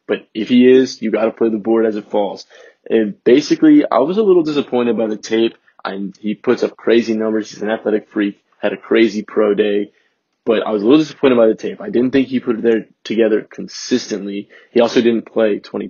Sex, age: male, 20-39